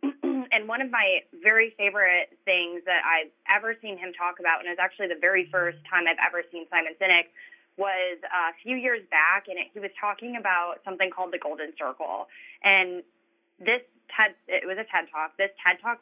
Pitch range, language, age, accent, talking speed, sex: 170-205 Hz, English, 20-39, American, 200 wpm, female